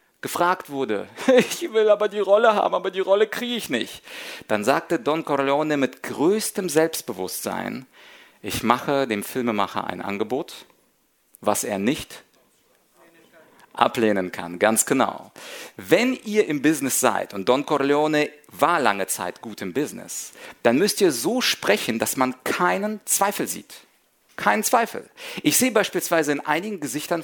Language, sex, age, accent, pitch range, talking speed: German, male, 40-59, German, 130-195 Hz, 145 wpm